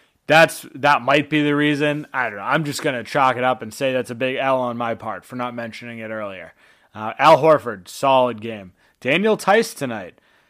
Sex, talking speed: male, 215 wpm